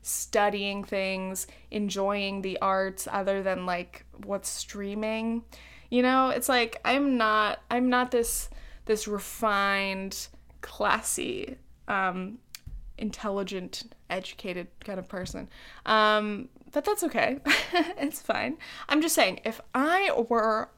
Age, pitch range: 20-39, 205-270 Hz